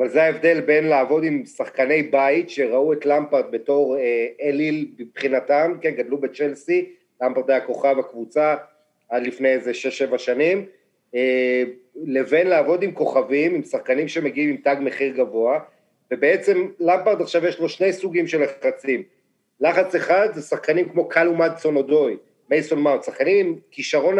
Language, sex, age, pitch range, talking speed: Hebrew, male, 40-59, 135-175 Hz, 145 wpm